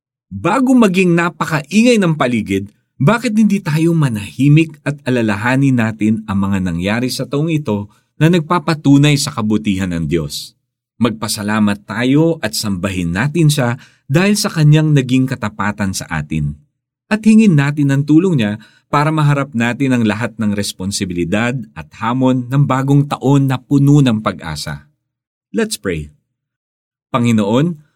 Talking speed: 135 wpm